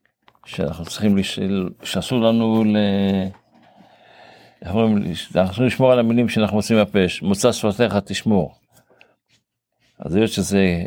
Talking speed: 120 wpm